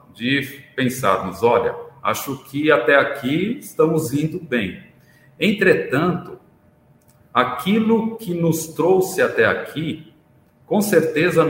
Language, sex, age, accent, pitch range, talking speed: Portuguese, male, 50-69, Brazilian, 130-185 Hz, 100 wpm